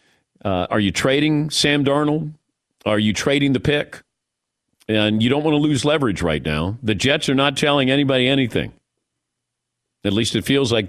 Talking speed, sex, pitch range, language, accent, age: 175 wpm, male, 105-140 Hz, English, American, 40-59